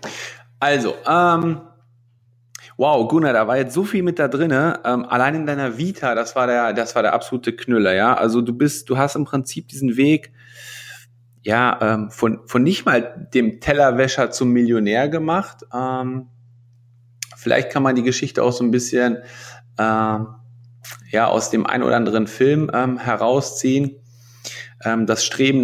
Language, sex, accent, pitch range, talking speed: German, male, German, 115-130 Hz, 160 wpm